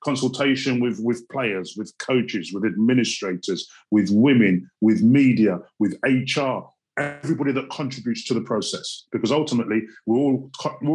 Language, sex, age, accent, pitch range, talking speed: English, male, 40-59, British, 110-135 Hz, 135 wpm